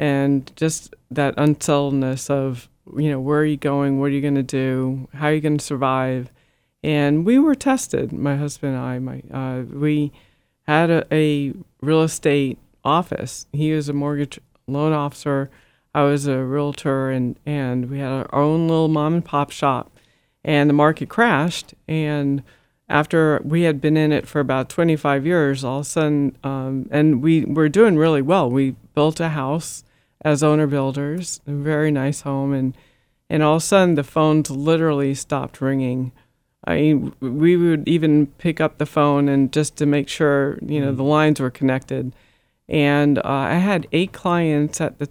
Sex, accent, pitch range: female, American, 135-155 Hz